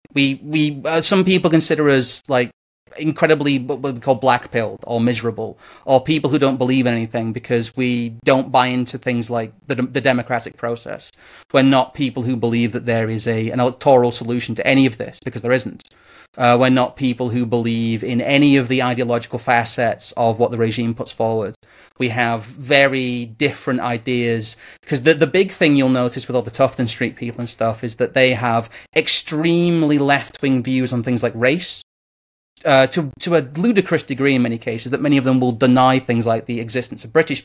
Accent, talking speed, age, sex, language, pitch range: British, 195 wpm, 30-49, male, English, 120-140 Hz